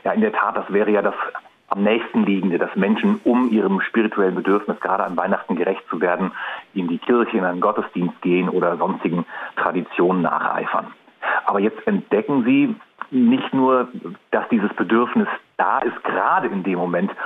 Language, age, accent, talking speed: German, 40-59, German, 170 wpm